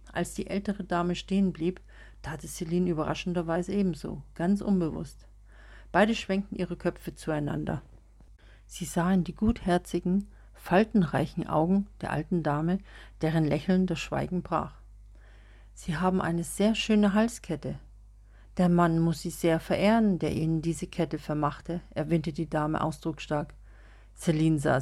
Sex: female